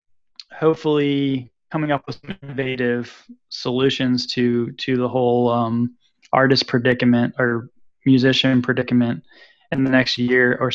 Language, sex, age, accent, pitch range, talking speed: English, male, 10-29, American, 120-150 Hz, 115 wpm